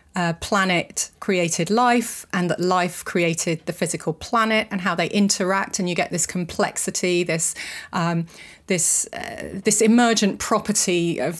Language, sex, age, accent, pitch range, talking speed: English, female, 30-49, British, 170-205 Hz, 145 wpm